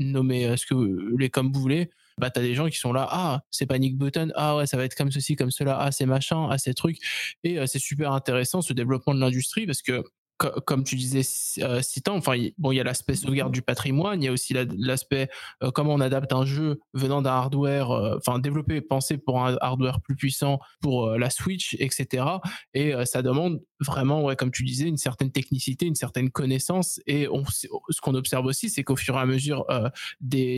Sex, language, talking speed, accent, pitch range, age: male, French, 225 wpm, French, 130-150 Hz, 20-39